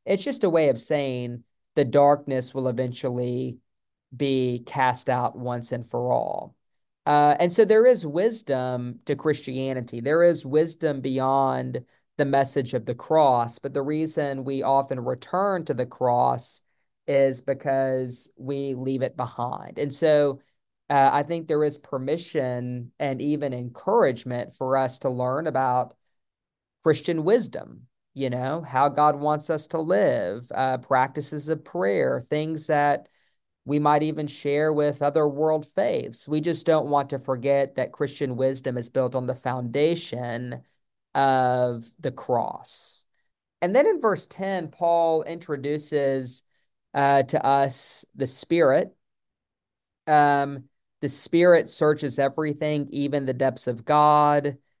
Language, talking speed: English, 140 wpm